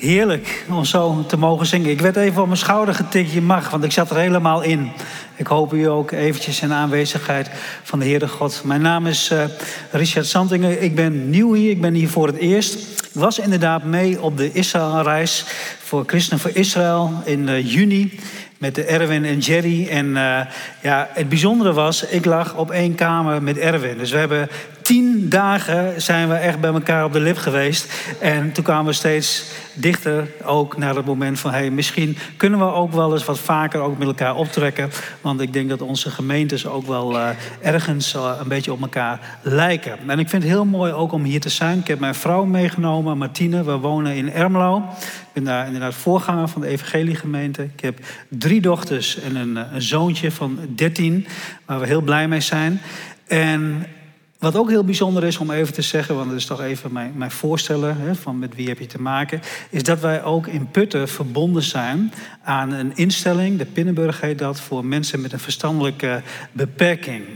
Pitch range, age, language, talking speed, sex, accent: 140-170 Hz, 40-59, Dutch, 200 wpm, male, Dutch